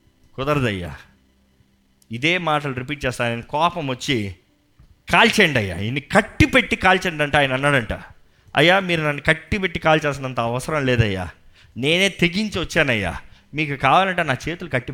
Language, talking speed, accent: Telugu, 110 wpm, native